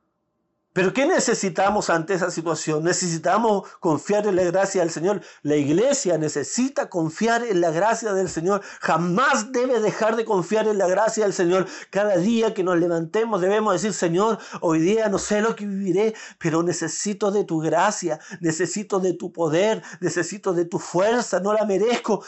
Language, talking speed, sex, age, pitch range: Spanish, 170 wpm, male, 50-69, 165-205 Hz